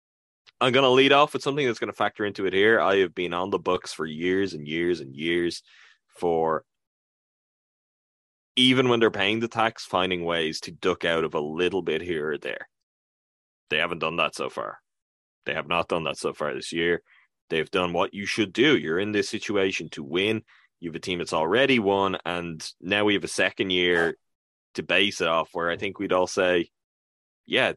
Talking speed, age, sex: 210 wpm, 10-29, male